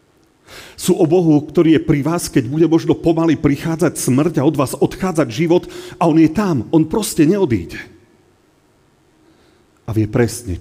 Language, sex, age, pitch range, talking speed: Slovak, male, 40-59, 110-155 Hz, 160 wpm